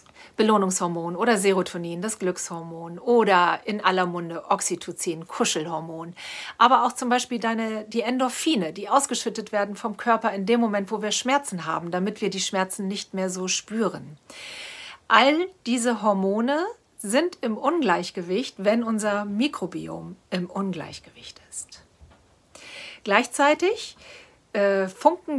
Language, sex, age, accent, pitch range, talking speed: German, female, 40-59, German, 185-245 Hz, 120 wpm